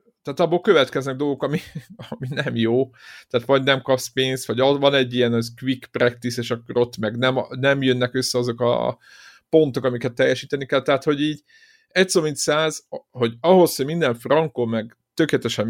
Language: Hungarian